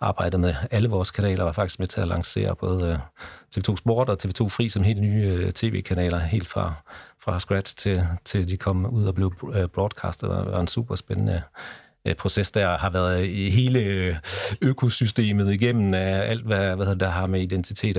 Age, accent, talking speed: 40-59, native, 185 wpm